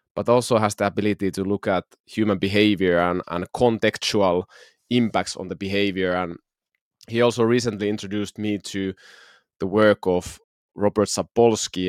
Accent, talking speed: native, 145 wpm